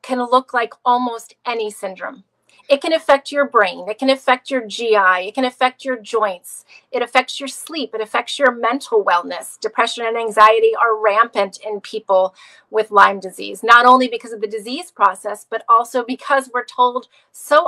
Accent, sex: American, female